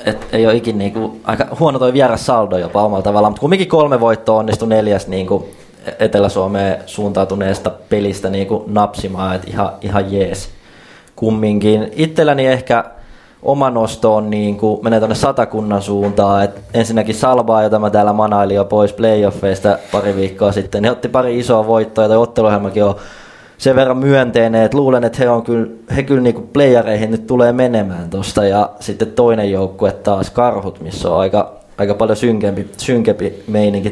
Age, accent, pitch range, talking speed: 20-39, native, 100-115 Hz, 155 wpm